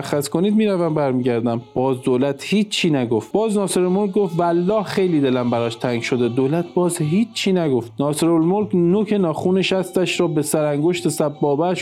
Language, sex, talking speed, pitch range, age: Persian, male, 165 wpm, 140-180 Hz, 50-69